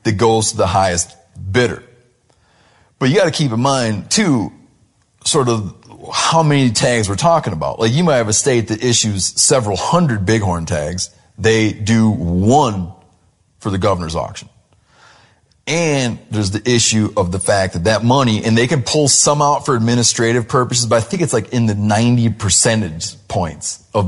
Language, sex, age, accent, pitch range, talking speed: English, male, 30-49, American, 100-125 Hz, 175 wpm